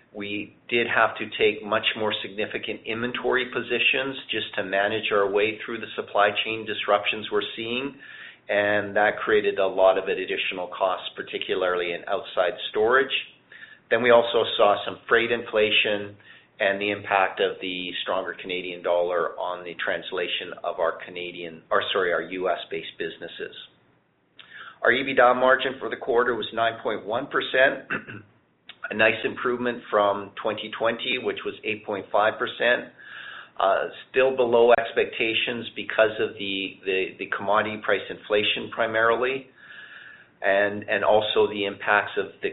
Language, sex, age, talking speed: English, male, 40-59, 135 wpm